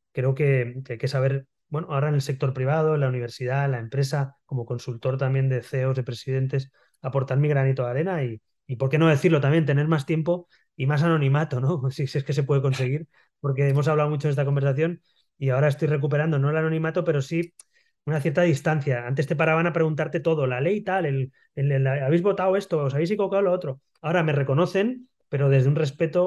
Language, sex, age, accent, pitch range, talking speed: Spanish, male, 20-39, Spanish, 135-155 Hz, 220 wpm